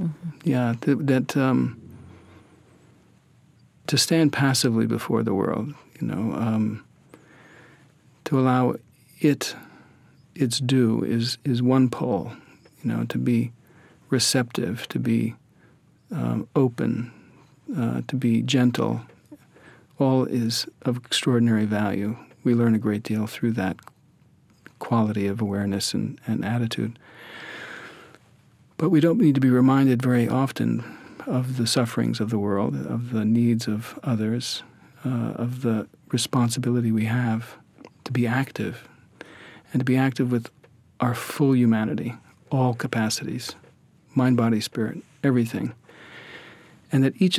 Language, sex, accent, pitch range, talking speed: English, male, American, 115-135 Hz, 125 wpm